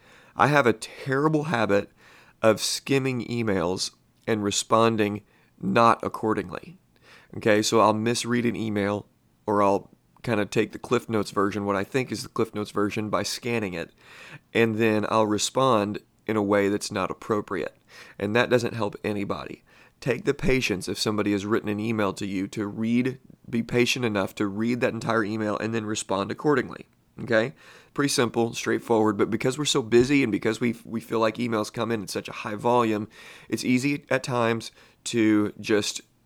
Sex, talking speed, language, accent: male, 175 wpm, English, American